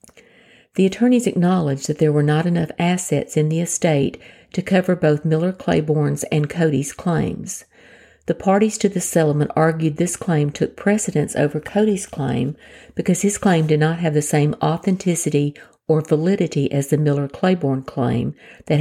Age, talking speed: 50-69, 160 wpm